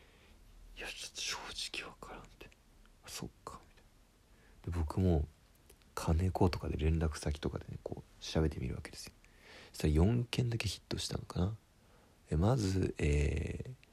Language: Japanese